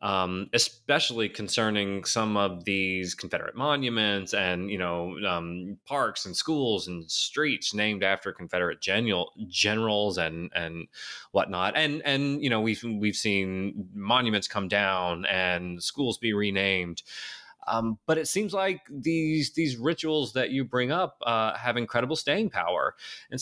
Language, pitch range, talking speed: English, 95-135 Hz, 145 wpm